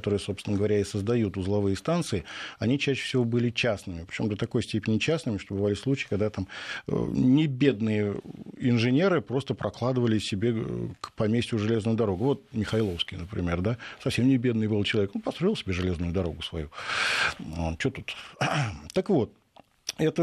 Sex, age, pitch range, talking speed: male, 50-69, 100-135 Hz, 150 wpm